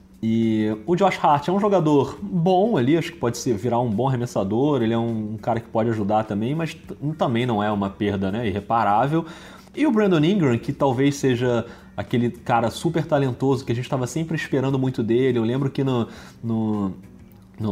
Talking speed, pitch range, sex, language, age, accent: 195 wpm, 115-165 Hz, male, Portuguese, 30-49, Brazilian